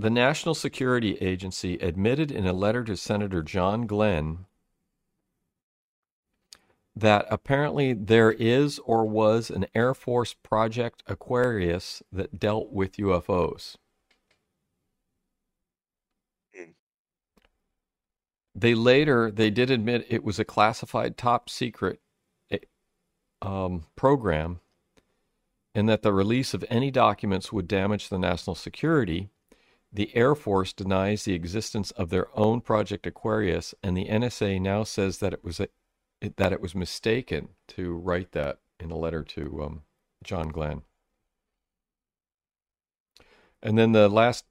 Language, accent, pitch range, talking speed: English, American, 90-115 Hz, 120 wpm